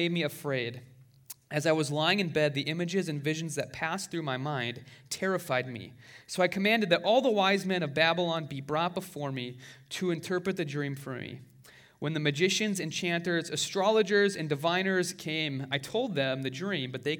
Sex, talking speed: male, 190 wpm